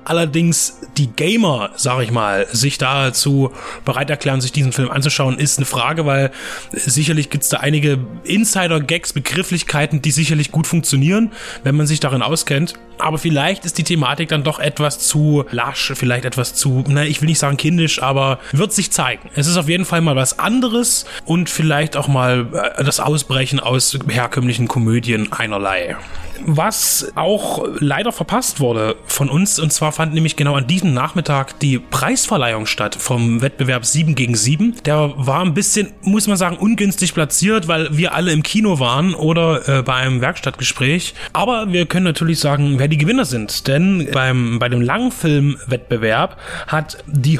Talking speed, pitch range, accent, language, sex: 170 wpm, 135-170 Hz, German, German, male